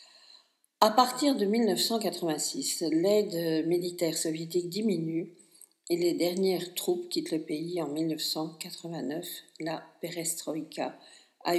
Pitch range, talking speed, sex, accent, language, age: 165-190 Hz, 100 wpm, female, French, French, 50-69